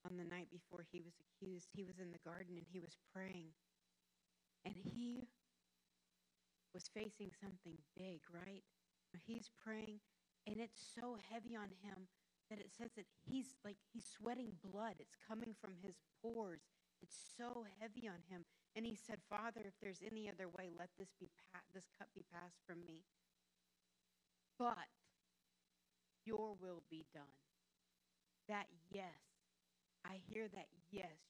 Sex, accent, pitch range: female, American, 160-215 Hz